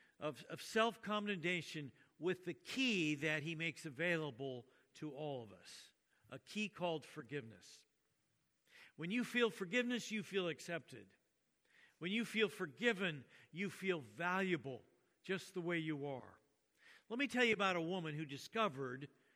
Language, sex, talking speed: English, male, 145 wpm